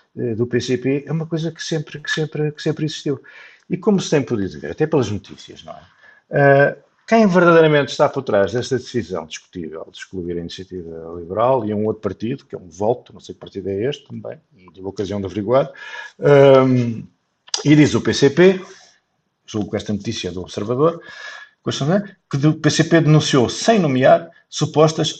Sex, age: male, 50-69